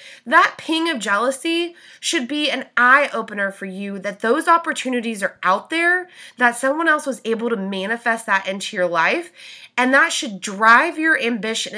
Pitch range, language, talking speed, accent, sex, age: 215-275 Hz, English, 175 wpm, American, female, 20-39